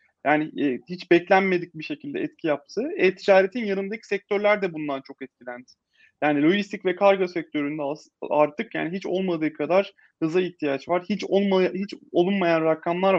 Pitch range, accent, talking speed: 165-220 Hz, native, 150 wpm